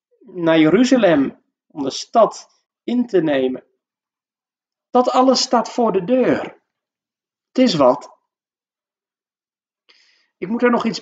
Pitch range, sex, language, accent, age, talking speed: 175-230 Hz, male, Dutch, Dutch, 40-59, 120 wpm